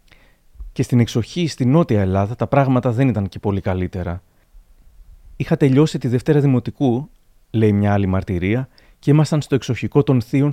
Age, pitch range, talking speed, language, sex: 30-49, 105-145 Hz, 160 wpm, Greek, male